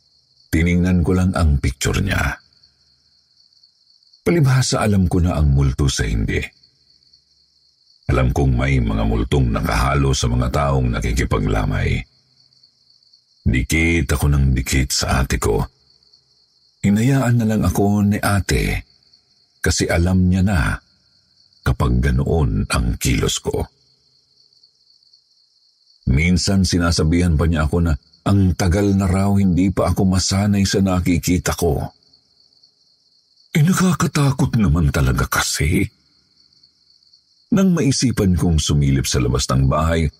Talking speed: 115 wpm